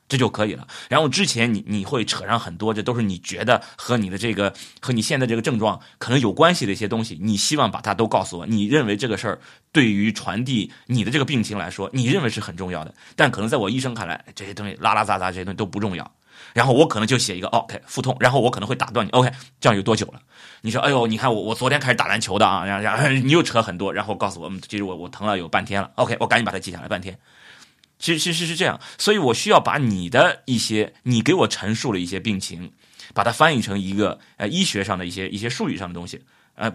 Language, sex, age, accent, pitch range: Chinese, male, 30-49, native, 100-125 Hz